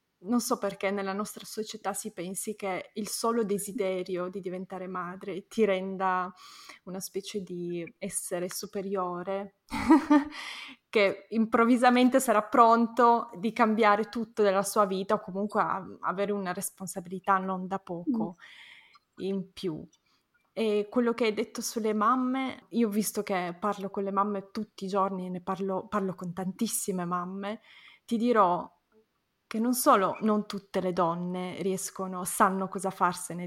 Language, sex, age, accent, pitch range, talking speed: Italian, female, 20-39, native, 190-220 Hz, 145 wpm